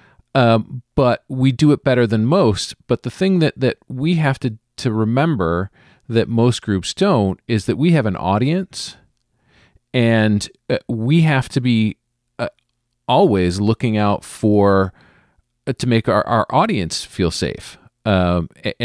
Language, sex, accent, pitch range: English, male, American, 100-130 Hz